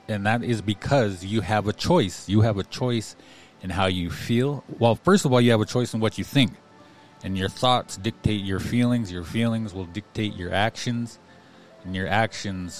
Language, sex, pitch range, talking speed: English, male, 95-120 Hz, 200 wpm